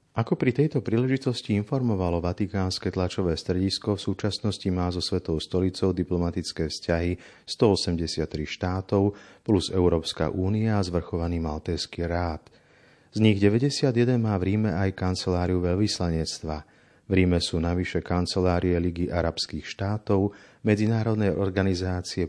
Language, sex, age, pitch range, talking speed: Slovak, male, 40-59, 85-100 Hz, 120 wpm